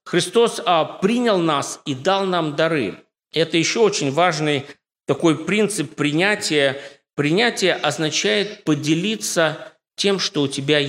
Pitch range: 140-180 Hz